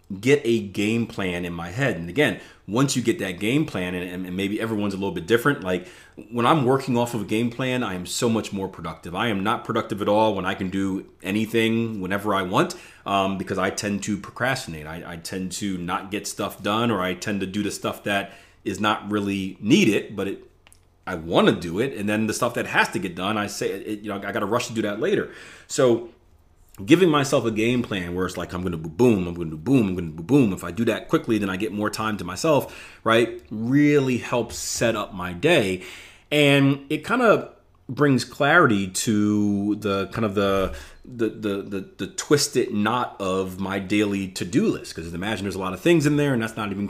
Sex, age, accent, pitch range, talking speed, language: male, 30-49, American, 95-120 Hz, 230 wpm, English